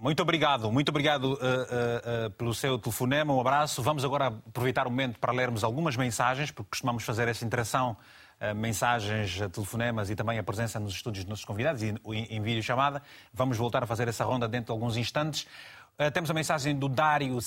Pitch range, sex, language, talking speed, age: 120-160 Hz, male, Portuguese, 200 wpm, 30-49